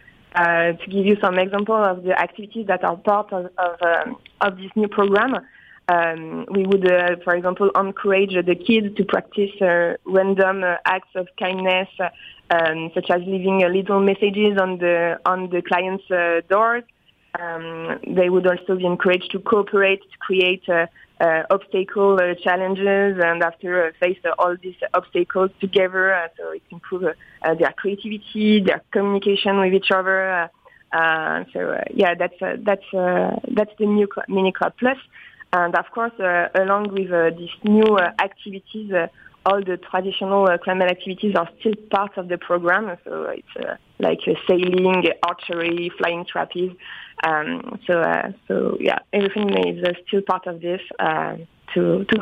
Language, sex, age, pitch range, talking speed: English, female, 20-39, 175-200 Hz, 175 wpm